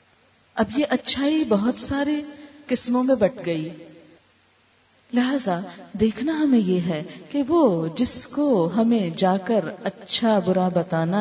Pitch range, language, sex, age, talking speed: 175-265 Hz, Urdu, female, 40-59, 130 wpm